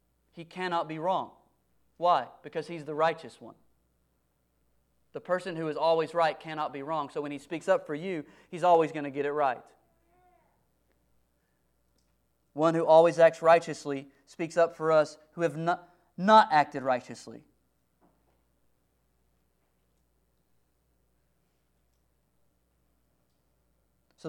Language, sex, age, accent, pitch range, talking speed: English, male, 30-49, American, 125-165 Hz, 120 wpm